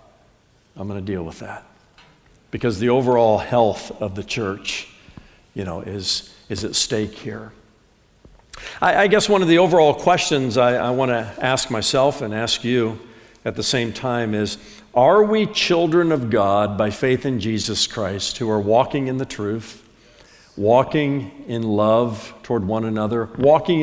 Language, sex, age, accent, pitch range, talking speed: English, male, 60-79, American, 110-145 Hz, 160 wpm